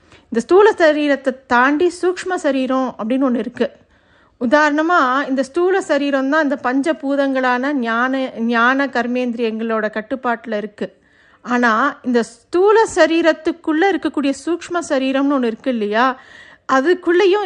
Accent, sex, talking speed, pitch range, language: native, female, 110 wpm, 245-310 Hz, Tamil